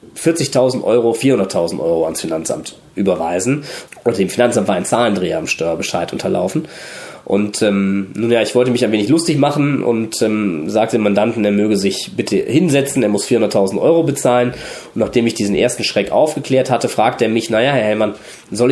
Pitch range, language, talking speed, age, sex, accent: 105-135 Hz, German, 185 wpm, 20-39, male, German